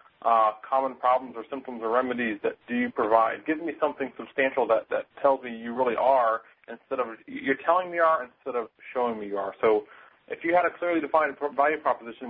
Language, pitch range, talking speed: English, 120-155 Hz, 220 wpm